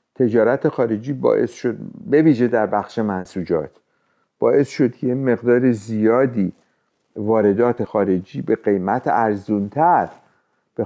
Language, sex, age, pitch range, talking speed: Persian, male, 50-69, 105-130 Hz, 105 wpm